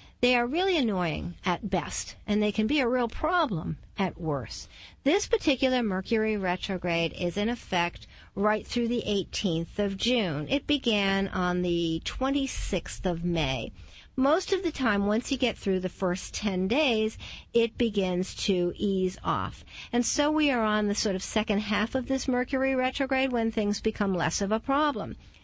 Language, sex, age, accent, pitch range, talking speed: English, female, 50-69, American, 190-275 Hz, 170 wpm